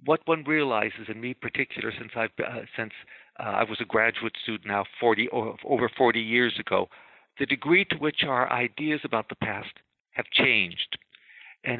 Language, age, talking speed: English, 60-79, 175 wpm